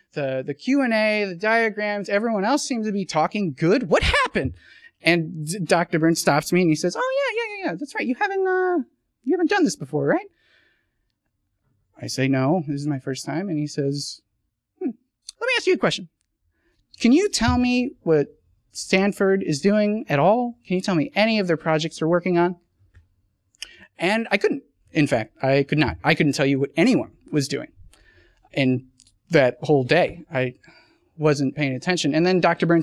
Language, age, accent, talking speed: English, 30-49, American, 190 wpm